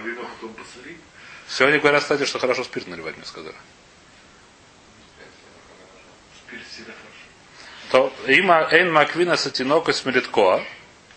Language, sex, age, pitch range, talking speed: Russian, male, 30-49, 115-145 Hz, 90 wpm